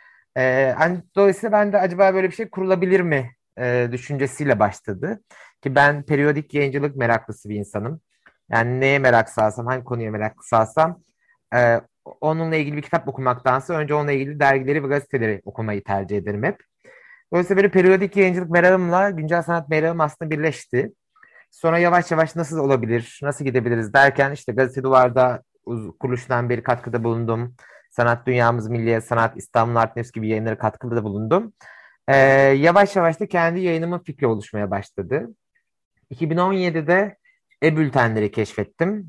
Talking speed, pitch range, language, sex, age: 145 wpm, 120-165 Hz, Turkish, male, 30-49